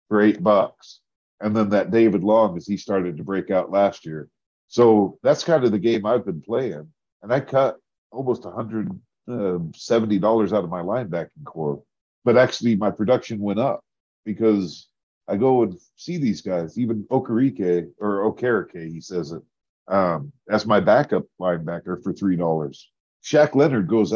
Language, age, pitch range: English, 40-59, 95-120 Hz